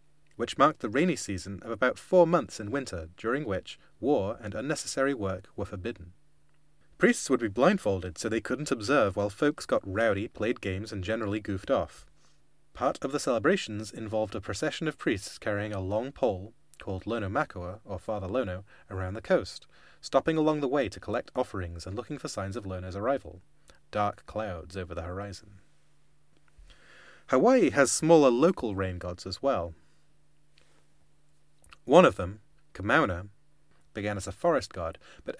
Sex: male